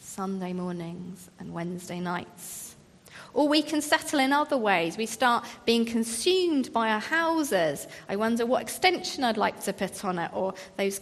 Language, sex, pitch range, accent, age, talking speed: English, female, 190-305 Hz, British, 30-49, 170 wpm